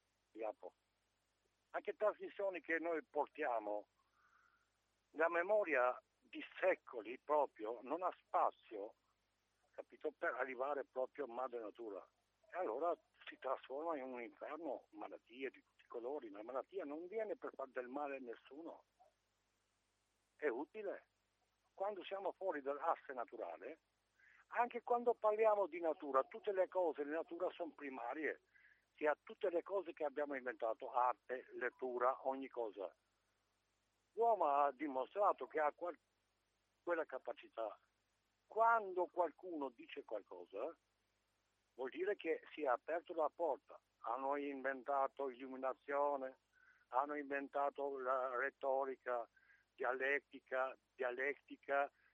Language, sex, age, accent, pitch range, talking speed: Italian, male, 60-79, native, 130-190 Hz, 120 wpm